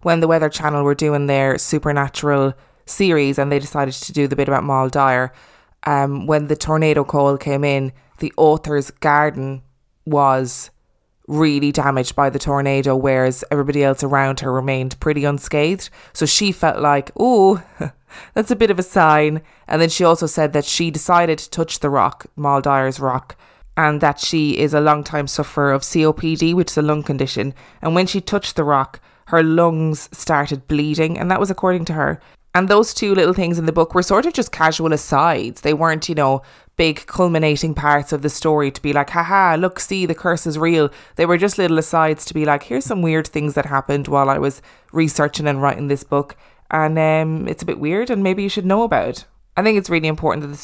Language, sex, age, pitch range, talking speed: English, female, 20-39, 140-165 Hz, 205 wpm